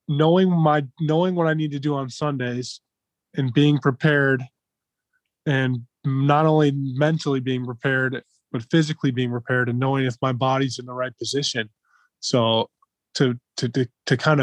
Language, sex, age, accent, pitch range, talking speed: English, male, 20-39, American, 125-150 Hz, 160 wpm